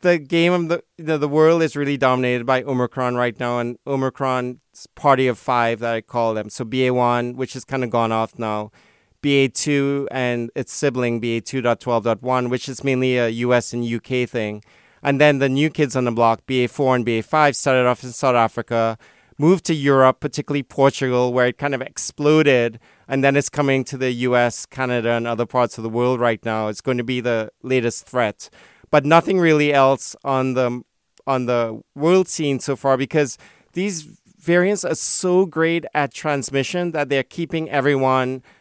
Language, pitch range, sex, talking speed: English, 120-145 Hz, male, 185 wpm